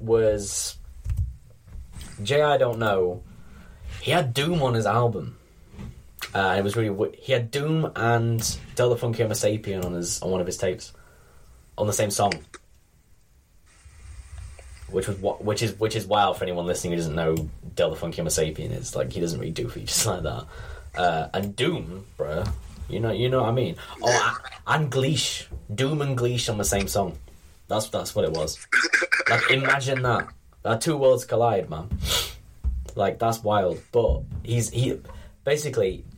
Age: 10-29